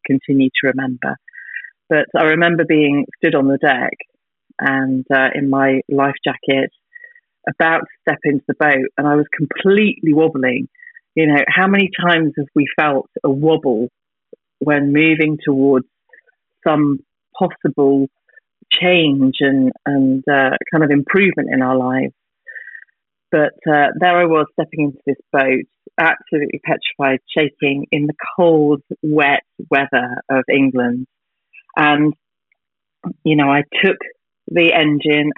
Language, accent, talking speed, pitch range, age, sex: English, British, 135 wpm, 140-165 Hz, 40-59, female